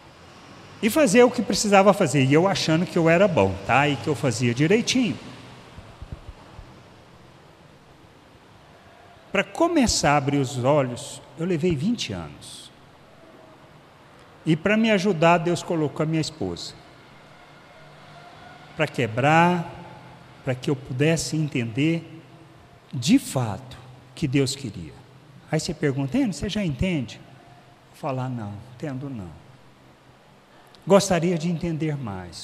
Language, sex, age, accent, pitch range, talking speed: Portuguese, male, 60-79, Brazilian, 125-170 Hz, 120 wpm